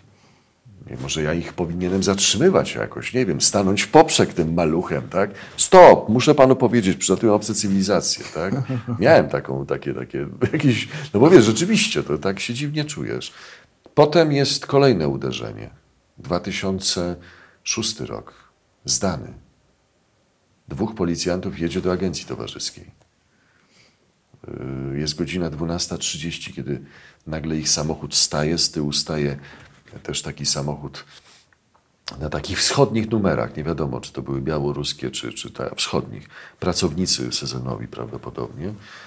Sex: male